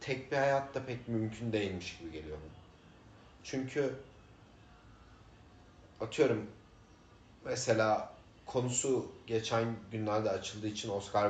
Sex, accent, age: male, native, 40-59